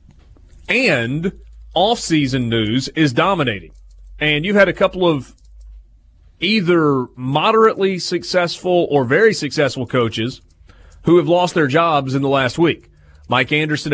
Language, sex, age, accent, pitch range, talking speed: English, male, 30-49, American, 125-160 Hz, 125 wpm